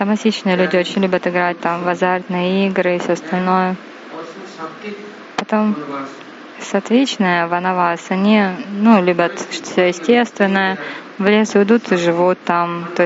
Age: 20-39